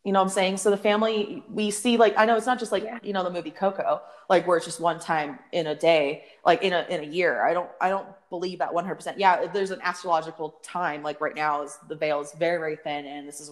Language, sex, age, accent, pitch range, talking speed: English, female, 20-39, American, 150-195 Hz, 275 wpm